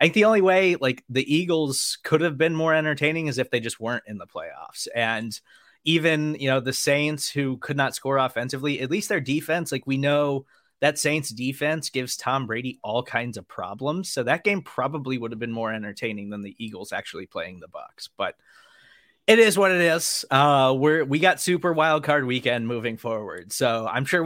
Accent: American